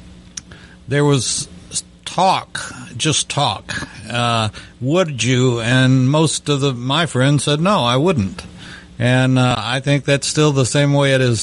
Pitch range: 120-145 Hz